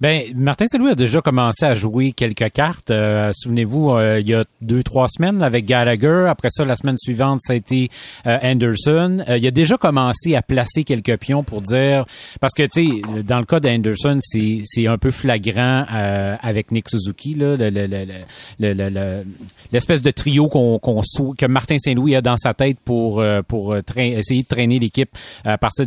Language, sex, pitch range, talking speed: French, male, 110-140 Hz, 205 wpm